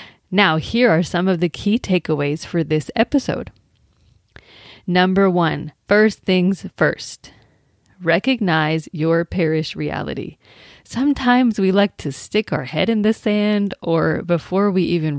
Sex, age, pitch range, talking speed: female, 30-49, 155-200 Hz, 135 wpm